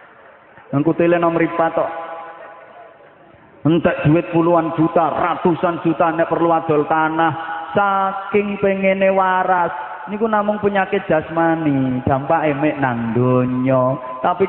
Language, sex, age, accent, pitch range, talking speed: English, male, 30-49, Indonesian, 165-200 Hz, 110 wpm